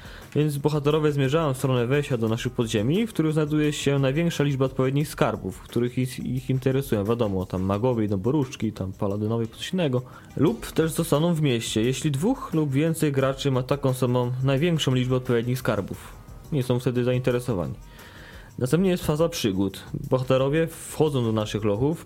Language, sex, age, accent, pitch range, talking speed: Polish, male, 20-39, native, 115-145 Hz, 160 wpm